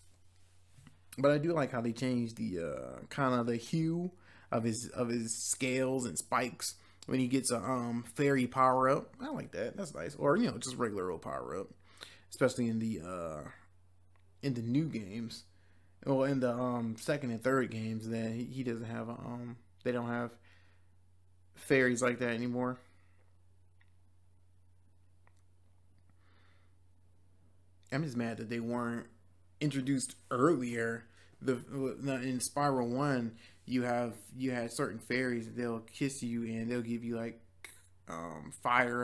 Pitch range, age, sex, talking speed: 90-125 Hz, 20-39, male, 150 wpm